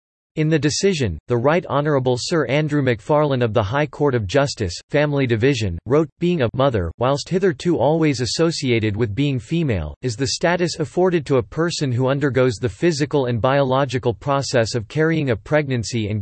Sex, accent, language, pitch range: male, American, English, 120-150 Hz